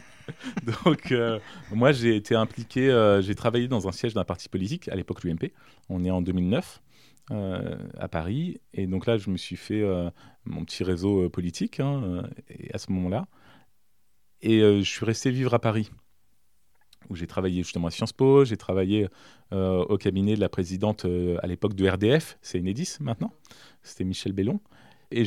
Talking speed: 185 wpm